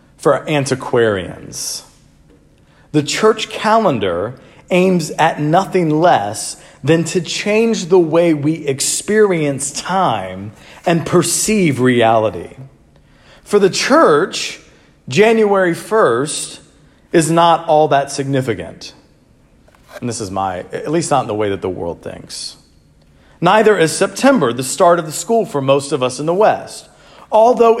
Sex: male